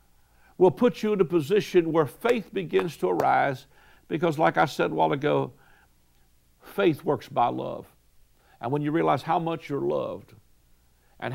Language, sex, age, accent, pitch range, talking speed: English, male, 60-79, American, 135-180 Hz, 165 wpm